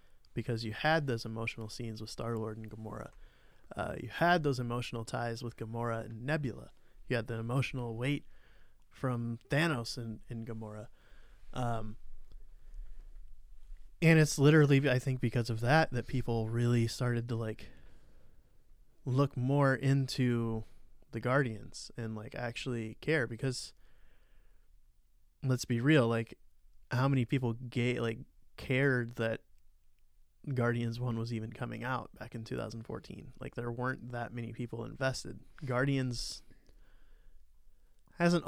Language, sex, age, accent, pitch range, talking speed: English, male, 20-39, American, 110-130 Hz, 130 wpm